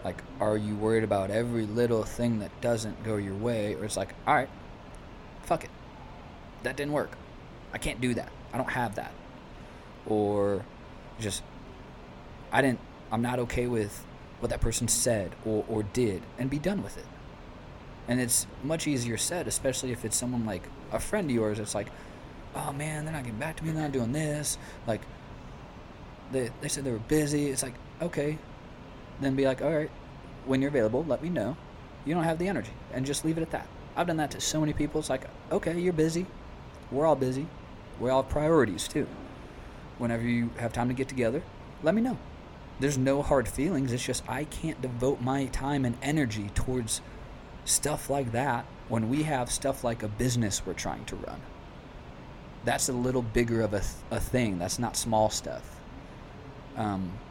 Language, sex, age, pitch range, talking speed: English, male, 20-39, 110-140 Hz, 190 wpm